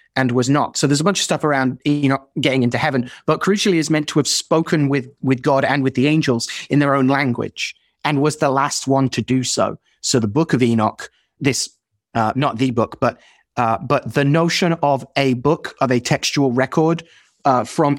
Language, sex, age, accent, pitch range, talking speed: English, male, 30-49, British, 120-145 Hz, 220 wpm